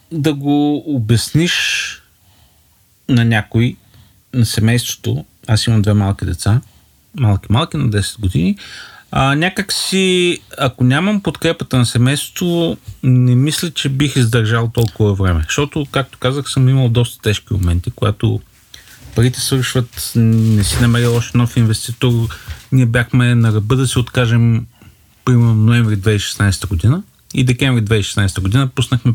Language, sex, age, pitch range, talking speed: Bulgarian, male, 40-59, 110-145 Hz, 130 wpm